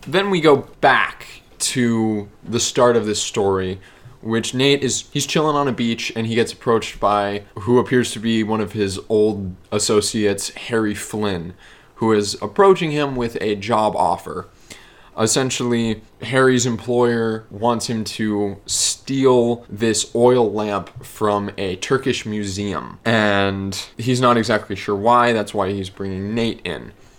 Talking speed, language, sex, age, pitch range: 150 wpm, English, male, 20-39, 100-120 Hz